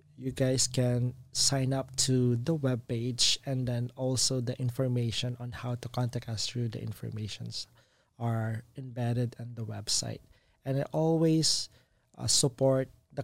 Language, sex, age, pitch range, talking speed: English, male, 20-39, 115-130 Hz, 145 wpm